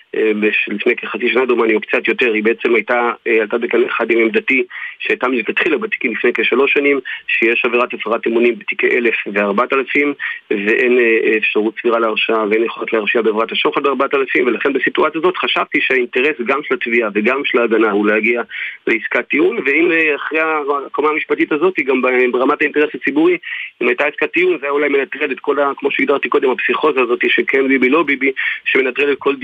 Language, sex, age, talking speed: English, male, 40-59, 130 wpm